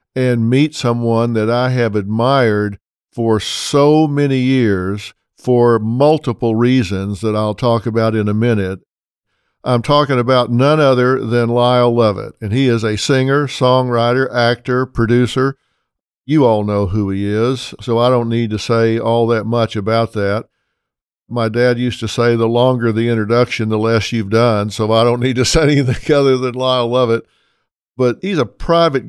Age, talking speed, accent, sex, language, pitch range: 50-69, 170 wpm, American, male, English, 115-130 Hz